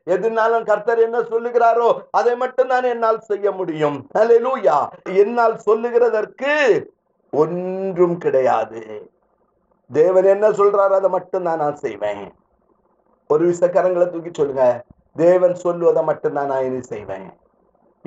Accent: native